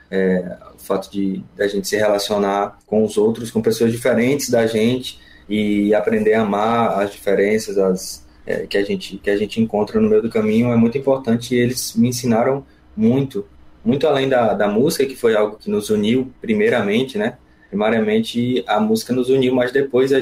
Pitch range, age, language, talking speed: 100-135 Hz, 20-39, Portuguese, 195 wpm